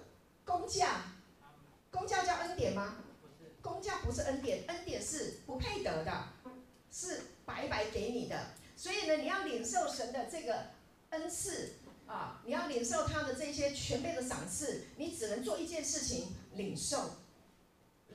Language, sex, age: Chinese, female, 40-59